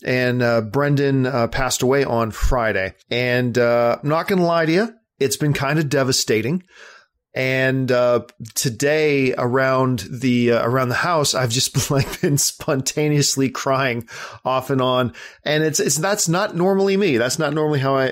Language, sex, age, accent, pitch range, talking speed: English, male, 40-59, American, 120-150 Hz, 170 wpm